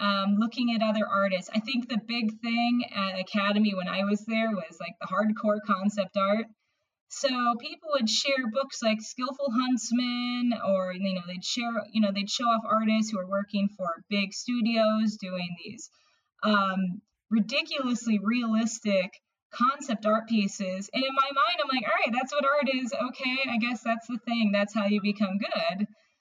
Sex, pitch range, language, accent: female, 200-245 Hz, English, American